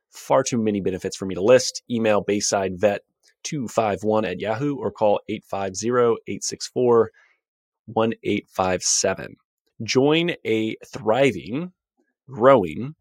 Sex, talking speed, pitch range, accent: male, 90 wpm, 105-130 Hz, American